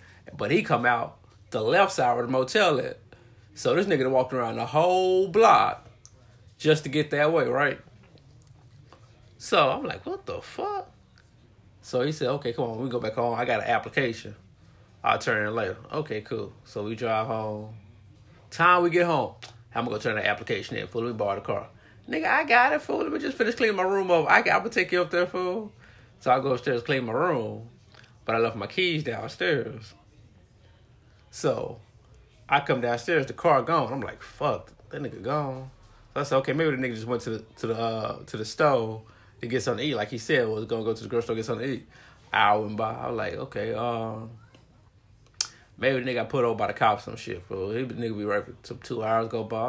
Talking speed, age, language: 230 wpm, 20-39, English